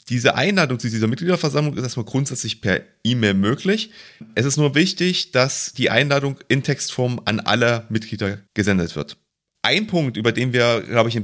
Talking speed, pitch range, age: 175 wpm, 110-145 Hz, 30-49